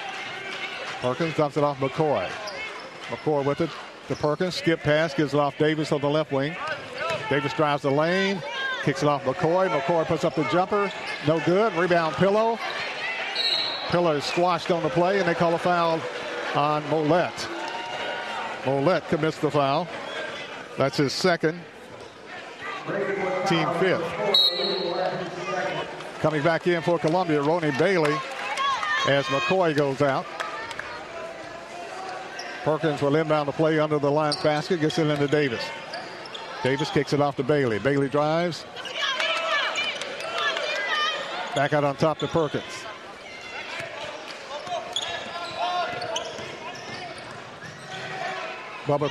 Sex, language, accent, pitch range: male, English, American, 150-180 Hz